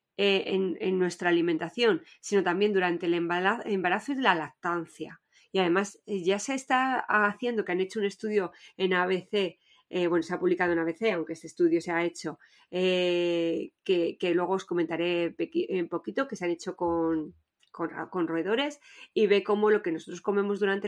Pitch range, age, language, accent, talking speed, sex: 170-205 Hz, 20-39, Spanish, Spanish, 180 wpm, female